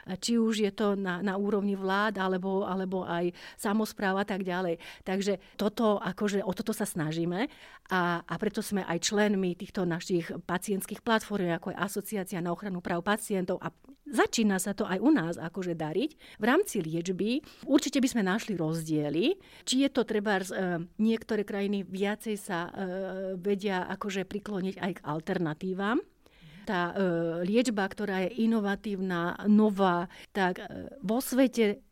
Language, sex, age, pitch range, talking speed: Slovak, female, 40-59, 185-220 Hz, 155 wpm